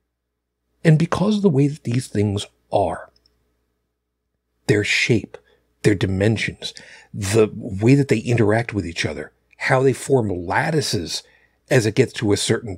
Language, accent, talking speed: English, American, 145 wpm